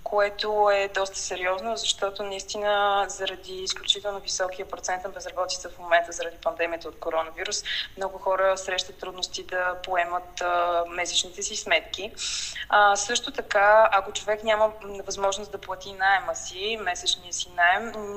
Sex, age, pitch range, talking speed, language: female, 20-39, 175-195 Hz, 135 wpm, Bulgarian